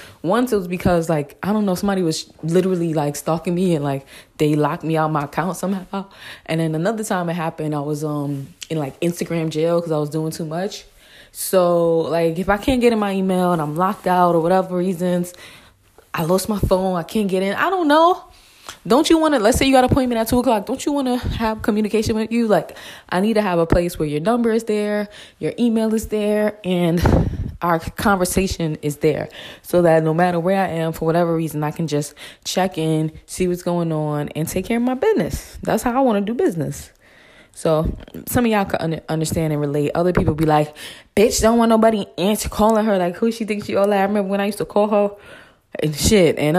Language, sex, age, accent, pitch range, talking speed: English, female, 20-39, American, 160-210 Hz, 230 wpm